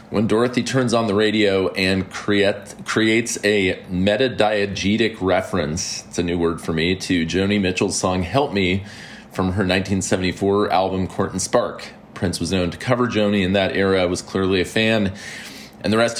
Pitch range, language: 90-110 Hz, English